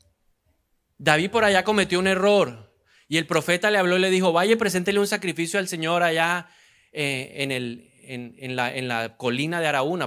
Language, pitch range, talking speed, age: Spanish, 135-185 Hz, 190 wpm, 30-49